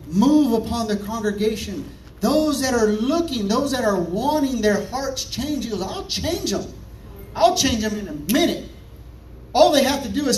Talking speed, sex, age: 185 wpm, male, 40-59